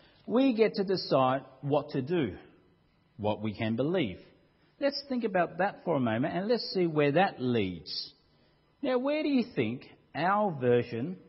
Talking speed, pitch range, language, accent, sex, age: 165 wpm, 130-195 Hz, English, Australian, male, 50-69